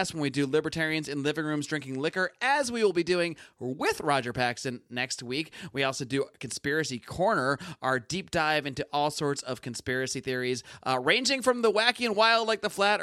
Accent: American